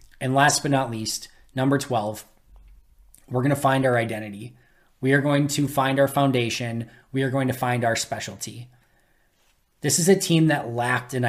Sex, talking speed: male, 180 wpm